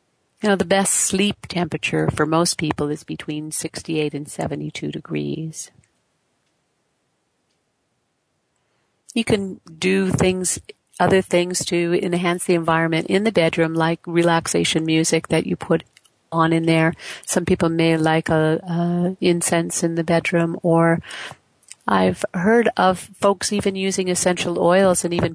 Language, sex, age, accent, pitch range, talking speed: English, female, 50-69, American, 160-185 Hz, 135 wpm